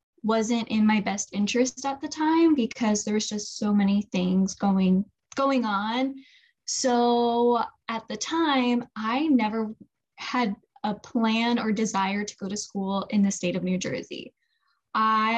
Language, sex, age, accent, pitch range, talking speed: English, female, 10-29, American, 205-240 Hz, 155 wpm